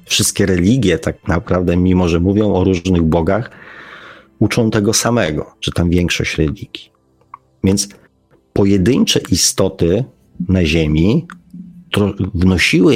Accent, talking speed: native, 105 wpm